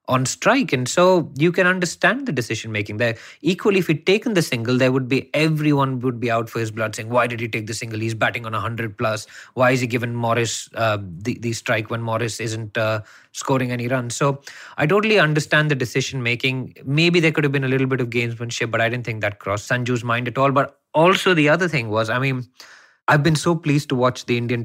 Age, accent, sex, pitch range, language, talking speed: 20-39, Indian, male, 115-150 Hz, English, 240 wpm